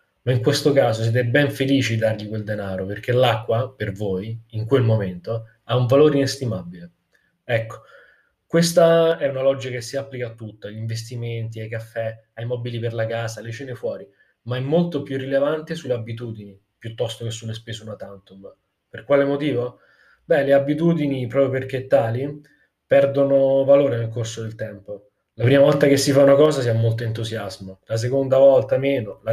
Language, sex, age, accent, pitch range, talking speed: Italian, male, 20-39, native, 115-140 Hz, 180 wpm